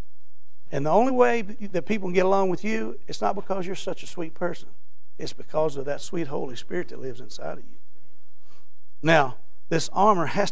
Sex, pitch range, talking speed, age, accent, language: male, 160-215 Hz, 200 wpm, 60-79, American, English